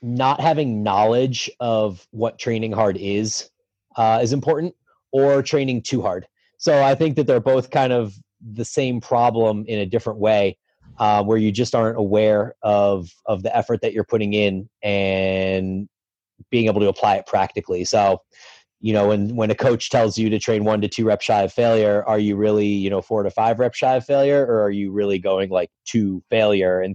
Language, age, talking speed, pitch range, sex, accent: English, 30-49, 200 wpm, 100-120 Hz, male, American